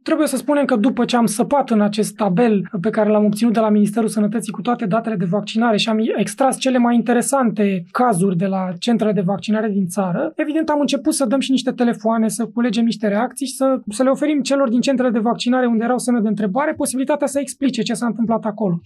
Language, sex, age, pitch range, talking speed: Romanian, male, 20-39, 215-270 Hz, 230 wpm